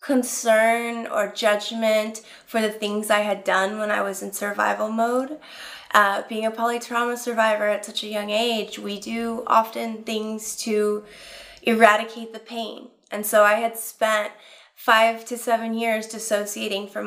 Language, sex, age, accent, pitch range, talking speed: English, female, 20-39, American, 205-235 Hz, 155 wpm